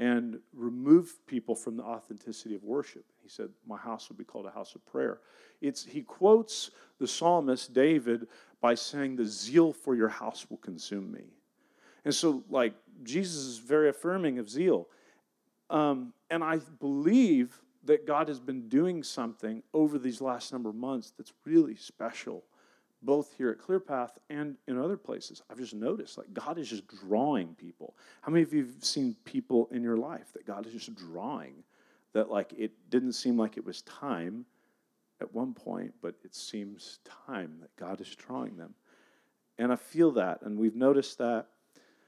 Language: English